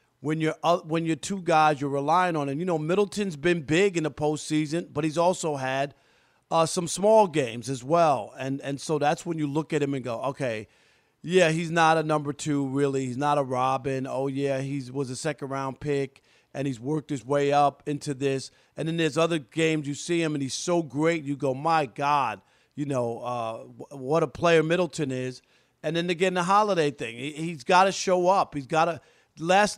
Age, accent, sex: 40-59, American, male